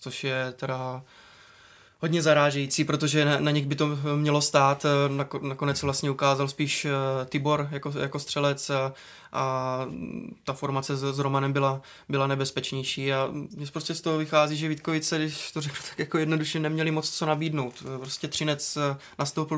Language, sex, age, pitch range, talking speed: Czech, male, 20-39, 140-155 Hz, 160 wpm